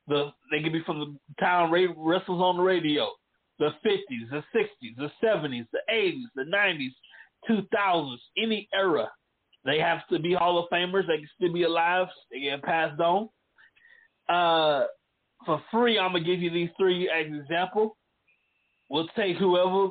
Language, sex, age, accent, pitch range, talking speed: English, male, 30-49, American, 160-195 Hz, 170 wpm